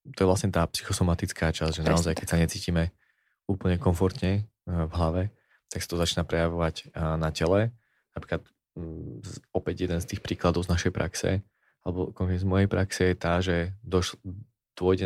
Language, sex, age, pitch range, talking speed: Slovak, male, 20-39, 85-95 Hz, 155 wpm